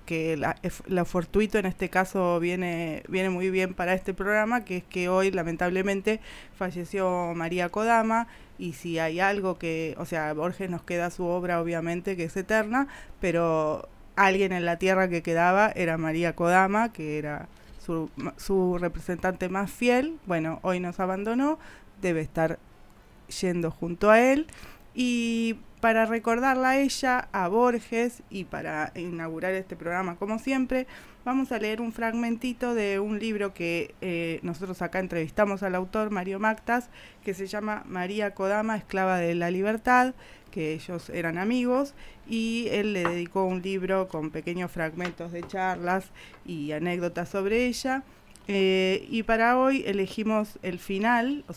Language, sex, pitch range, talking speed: Spanish, female, 175-220 Hz, 155 wpm